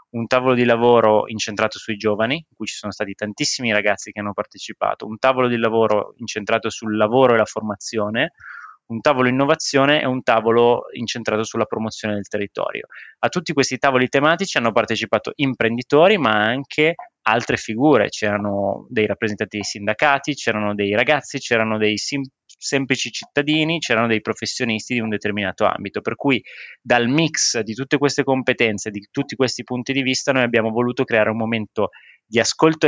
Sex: male